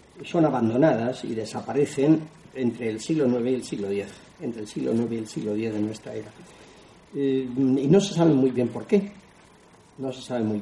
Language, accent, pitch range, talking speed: Spanish, Spanish, 110-140 Hz, 205 wpm